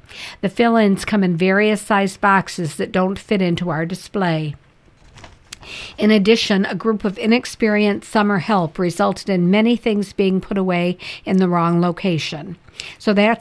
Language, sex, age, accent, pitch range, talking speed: English, female, 60-79, American, 175-205 Hz, 150 wpm